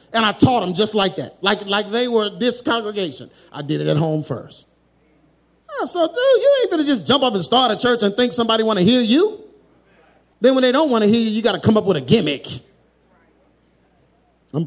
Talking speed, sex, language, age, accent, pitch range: 230 wpm, male, English, 30-49, American, 195-320 Hz